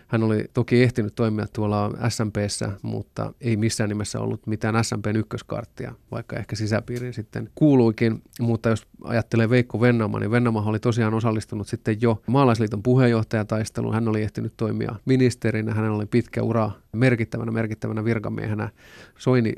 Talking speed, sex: 140 wpm, male